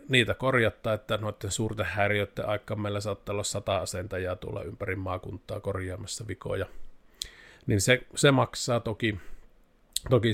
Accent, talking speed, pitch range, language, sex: native, 130 wpm, 95-115 Hz, Finnish, male